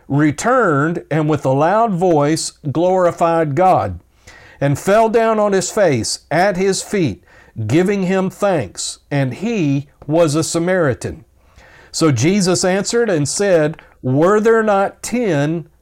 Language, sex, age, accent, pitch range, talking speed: English, male, 50-69, American, 145-190 Hz, 130 wpm